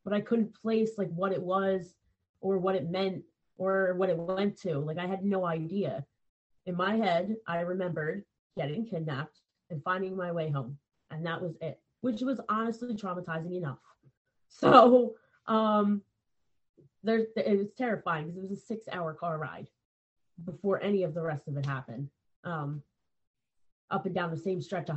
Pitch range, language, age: 165-205 Hz, English, 20-39